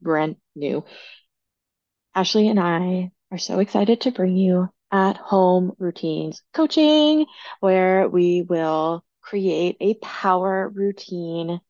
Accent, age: American, 20-39